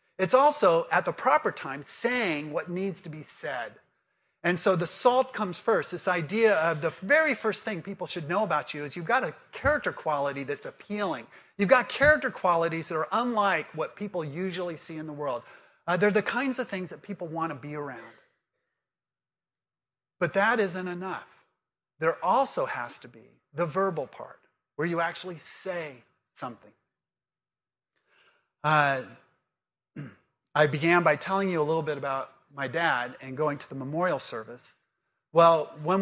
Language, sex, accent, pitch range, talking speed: English, male, American, 145-190 Hz, 165 wpm